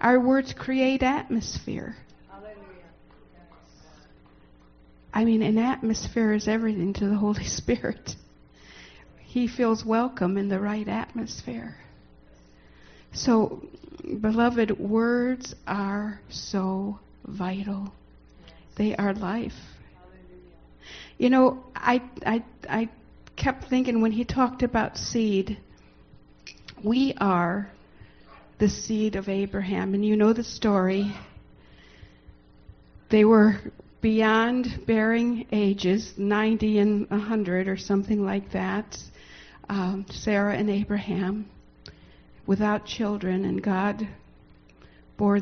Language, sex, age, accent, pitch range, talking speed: English, female, 60-79, American, 175-230 Hz, 95 wpm